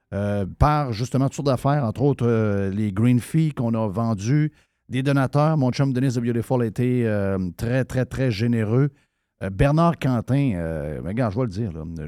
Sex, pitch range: male, 105-140 Hz